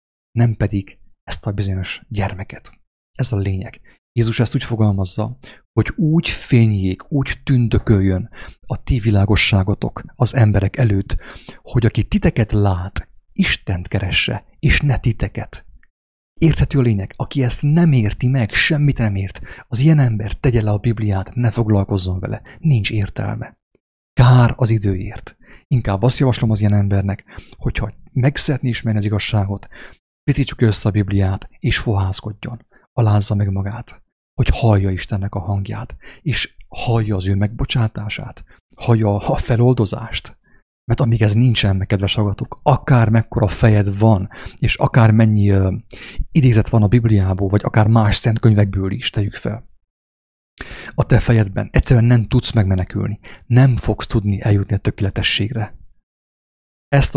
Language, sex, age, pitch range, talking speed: English, male, 30-49, 100-120 Hz, 140 wpm